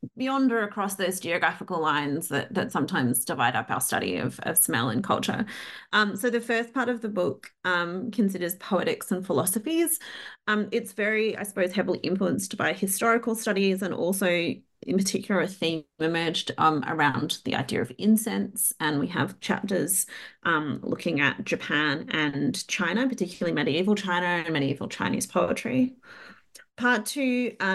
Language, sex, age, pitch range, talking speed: English, female, 30-49, 160-220 Hz, 160 wpm